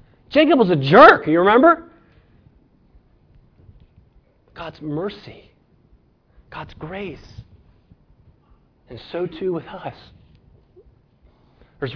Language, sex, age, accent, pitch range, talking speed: English, male, 30-49, American, 115-165 Hz, 80 wpm